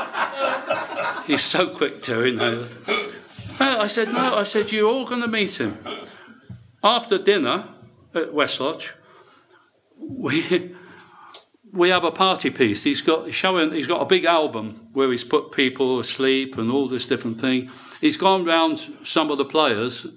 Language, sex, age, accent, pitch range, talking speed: English, male, 60-79, British, 130-180 Hz, 155 wpm